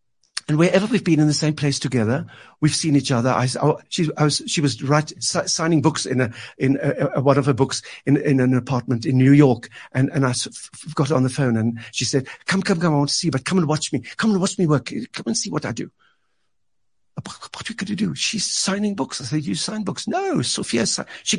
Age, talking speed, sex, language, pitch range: 60-79, 250 wpm, male, English, 135-190 Hz